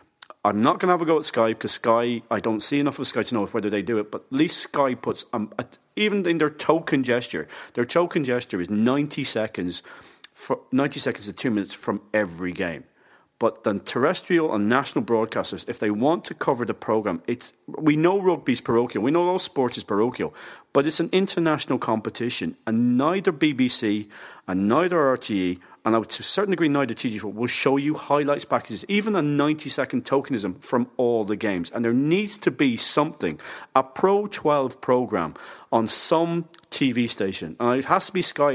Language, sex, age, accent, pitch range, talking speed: English, male, 40-59, British, 115-160 Hz, 200 wpm